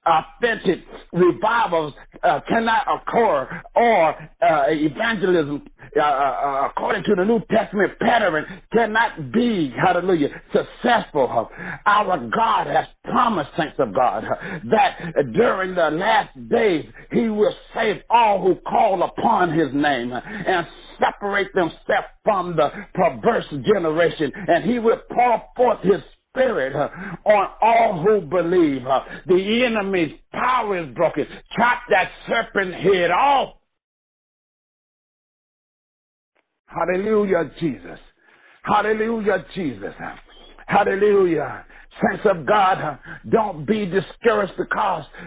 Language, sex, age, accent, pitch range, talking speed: English, male, 60-79, American, 165-225 Hz, 105 wpm